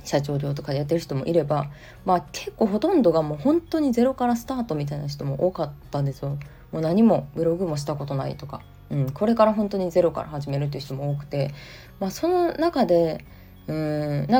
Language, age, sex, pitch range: Japanese, 20-39, female, 145-220 Hz